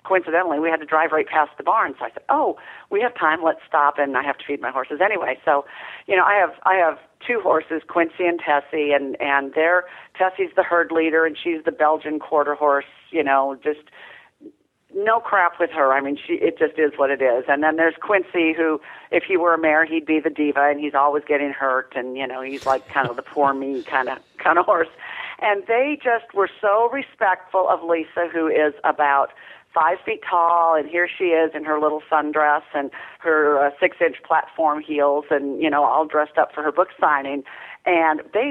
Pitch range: 145-200 Hz